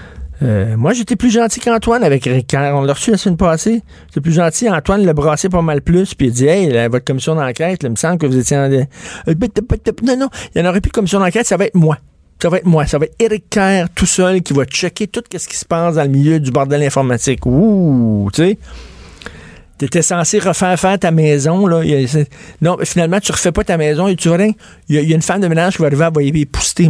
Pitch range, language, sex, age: 135-185 Hz, French, male, 50-69